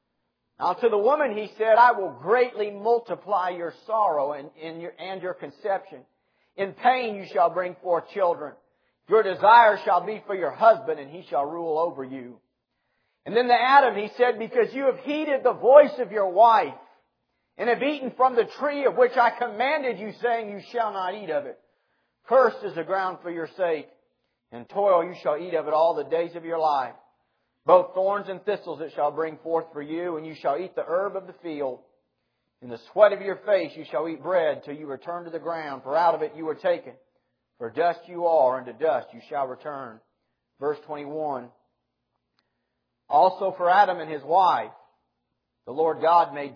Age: 50-69